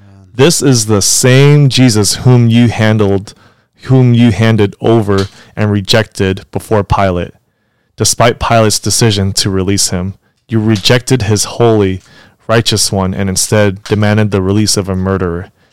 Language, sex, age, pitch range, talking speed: English, male, 20-39, 100-115 Hz, 135 wpm